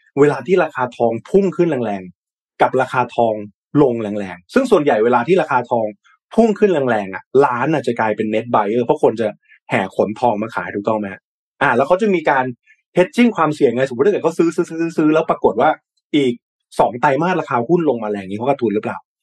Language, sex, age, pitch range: Thai, male, 20-39, 115-165 Hz